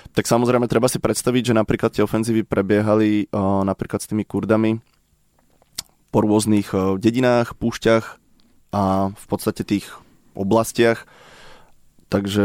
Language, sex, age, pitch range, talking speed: Slovak, male, 20-39, 100-115 Hz, 115 wpm